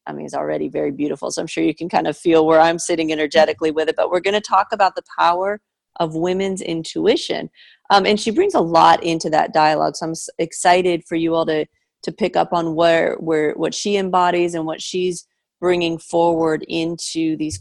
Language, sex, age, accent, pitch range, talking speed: English, female, 30-49, American, 160-190 Hz, 215 wpm